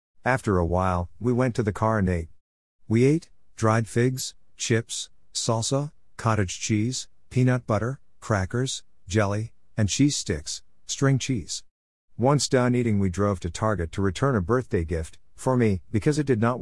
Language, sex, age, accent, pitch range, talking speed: English, male, 50-69, American, 90-115 Hz, 165 wpm